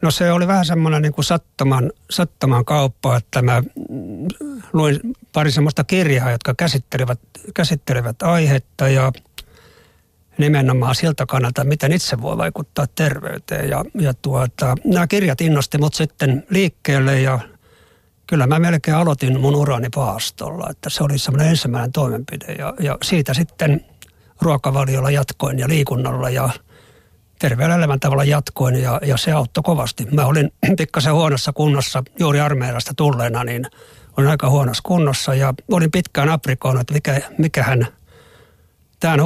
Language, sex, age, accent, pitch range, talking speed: Finnish, male, 60-79, native, 130-160 Hz, 135 wpm